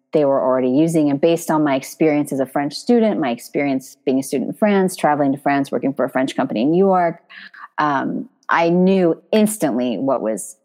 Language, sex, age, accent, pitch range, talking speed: English, female, 30-49, American, 140-180 Hz, 210 wpm